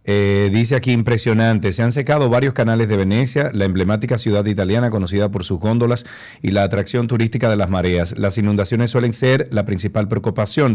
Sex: male